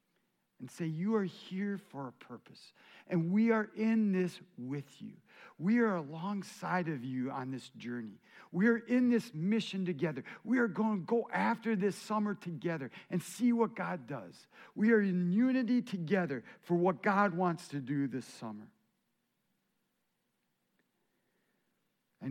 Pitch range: 150-205 Hz